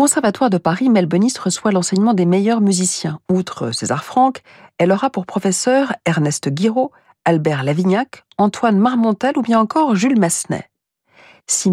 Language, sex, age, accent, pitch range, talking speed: French, female, 50-69, French, 165-230 Hz, 145 wpm